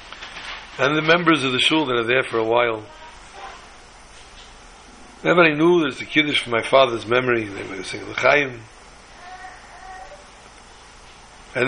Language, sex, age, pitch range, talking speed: English, male, 60-79, 130-180 Hz, 135 wpm